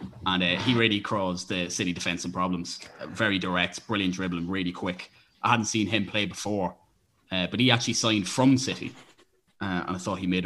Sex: male